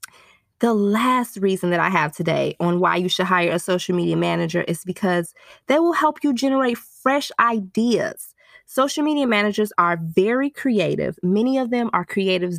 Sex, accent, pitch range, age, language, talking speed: female, American, 175-230 Hz, 20-39, English, 170 wpm